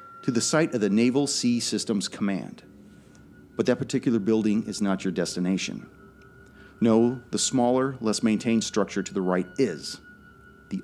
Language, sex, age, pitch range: English, male, 40-59, 95-125 Hz